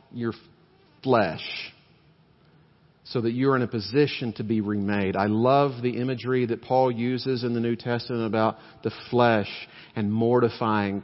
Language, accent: English, American